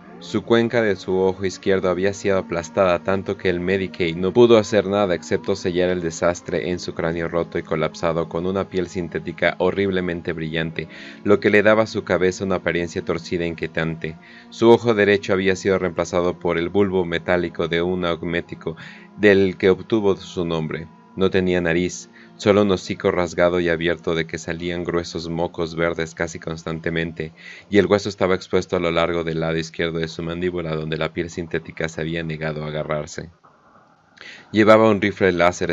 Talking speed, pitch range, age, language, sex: 180 wpm, 85-95 Hz, 30-49, Spanish, male